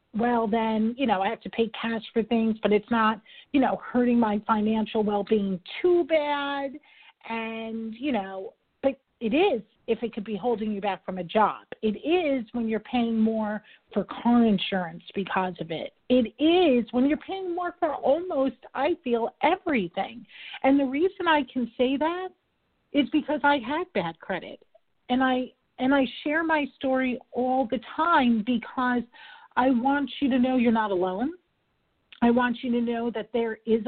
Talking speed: 180 wpm